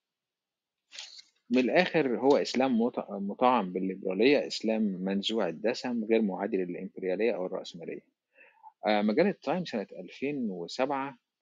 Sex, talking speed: male, 95 wpm